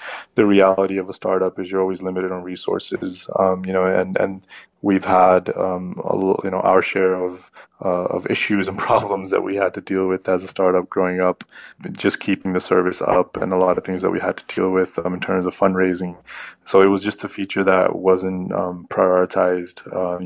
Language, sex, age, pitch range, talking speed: English, male, 20-39, 90-95 Hz, 220 wpm